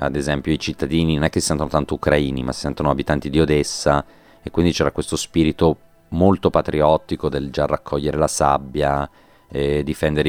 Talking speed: 180 wpm